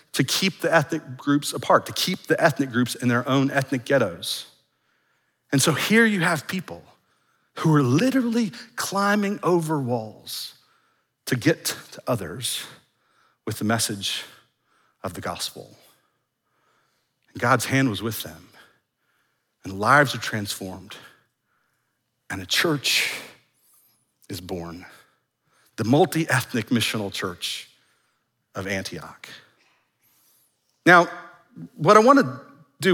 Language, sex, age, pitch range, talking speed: English, male, 40-59, 120-190 Hz, 120 wpm